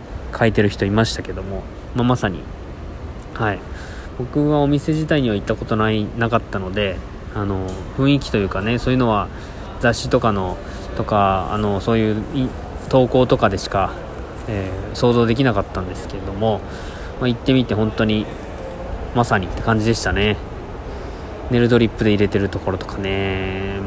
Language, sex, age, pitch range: Japanese, male, 20-39, 95-120 Hz